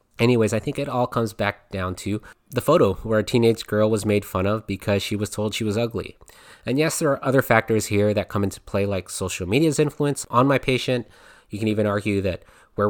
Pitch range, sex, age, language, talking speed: 100-125 Hz, male, 20-39, English, 235 wpm